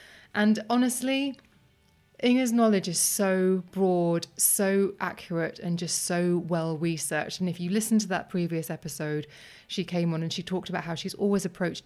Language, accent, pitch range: English, British, 170-200 Hz